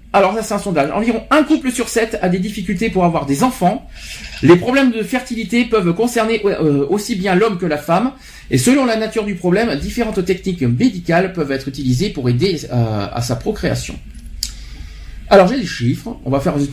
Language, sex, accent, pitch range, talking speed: French, male, French, 160-230 Hz, 195 wpm